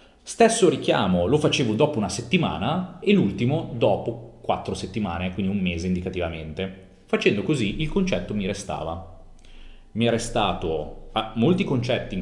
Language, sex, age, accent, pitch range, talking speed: Italian, male, 30-49, native, 90-125 Hz, 140 wpm